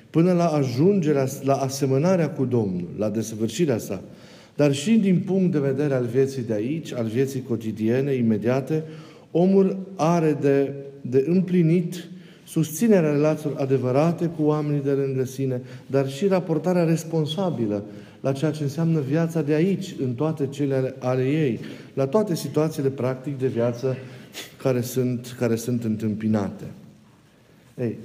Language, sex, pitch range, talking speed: Romanian, male, 135-165 Hz, 140 wpm